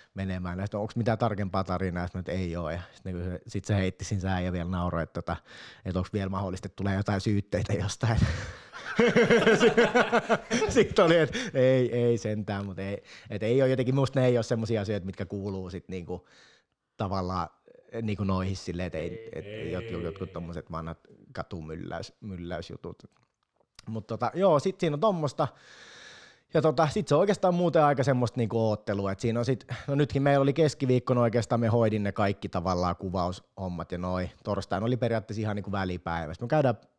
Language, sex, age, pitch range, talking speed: Finnish, male, 30-49, 90-130 Hz, 175 wpm